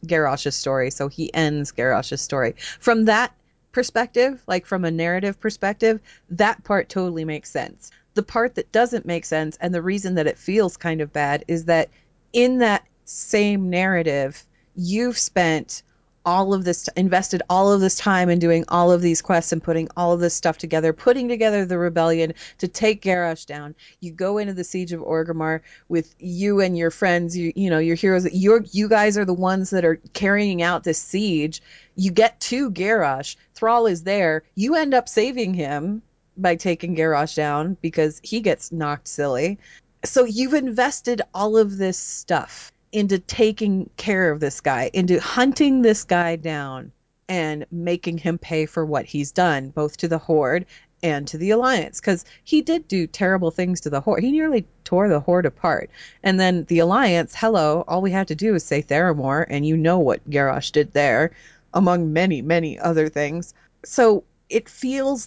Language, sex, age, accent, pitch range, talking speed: English, female, 30-49, American, 160-205 Hz, 185 wpm